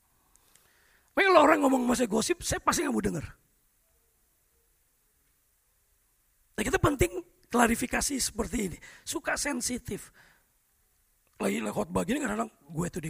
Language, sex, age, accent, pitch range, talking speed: English, male, 40-59, Indonesian, 170-250 Hz, 125 wpm